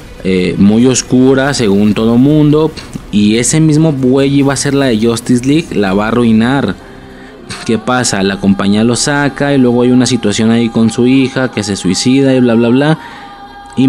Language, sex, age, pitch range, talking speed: Spanish, male, 30-49, 105-130 Hz, 190 wpm